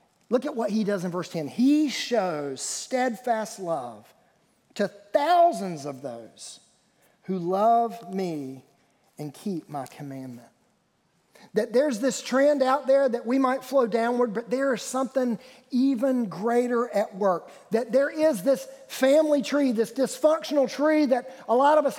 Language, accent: English, American